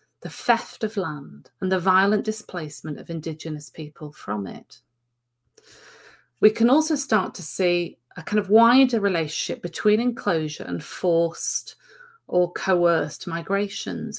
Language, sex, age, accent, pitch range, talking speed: English, female, 40-59, British, 155-195 Hz, 130 wpm